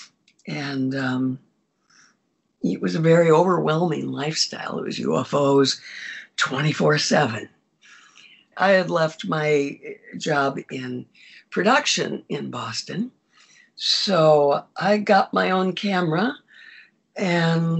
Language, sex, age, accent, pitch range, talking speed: English, female, 60-79, American, 145-195 Hz, 100 wpm